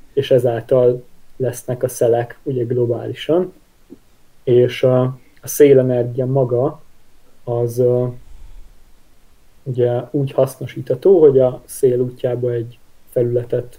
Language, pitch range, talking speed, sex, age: Hungarian, 120-135 Hz, 90 wpm, male, 20-39